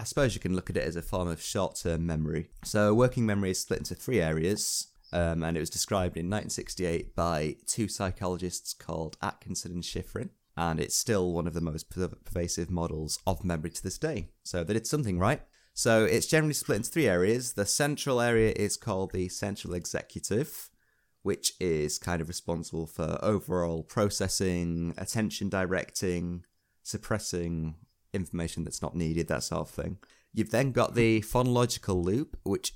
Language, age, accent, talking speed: English, 30-49, British, 175 wpm